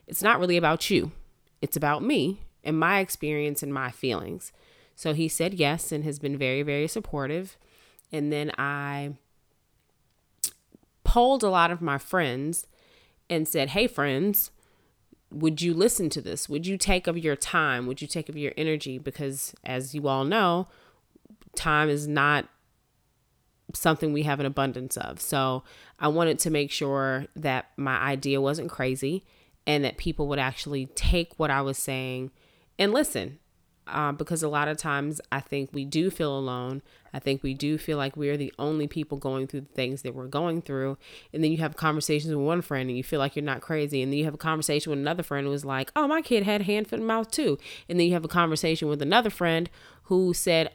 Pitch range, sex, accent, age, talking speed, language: 140-170 Hz, female, American, 20-39, 200 wpm, English